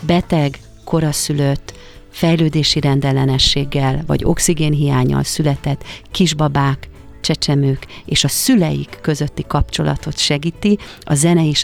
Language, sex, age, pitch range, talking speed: Hungarian, female, 40-59, 140-165 Hz, 95 wpm